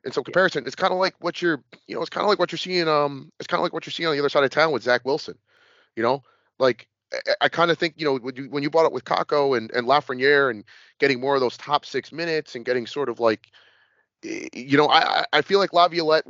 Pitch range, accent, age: 135-170 Hz, American, 30-49